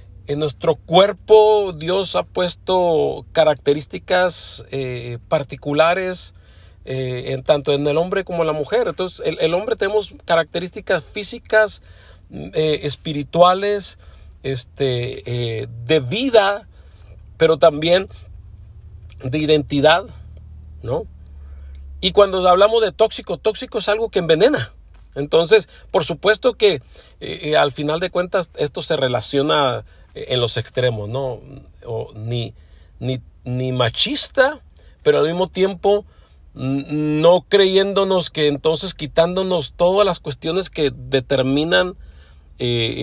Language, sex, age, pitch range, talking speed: Spanish, male, 50-69, 120-175 Hz, 115 wpm